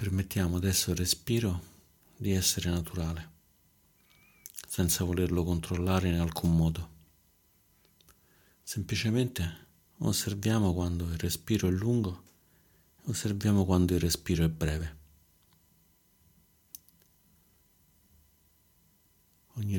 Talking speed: 85 wpm